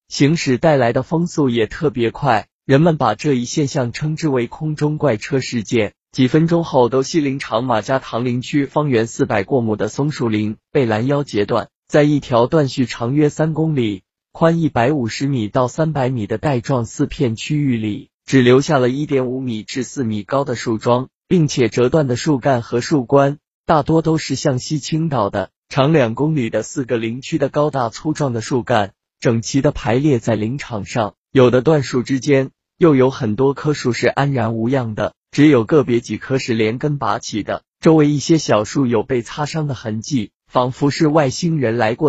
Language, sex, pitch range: Chinese, male, 120-150 Hz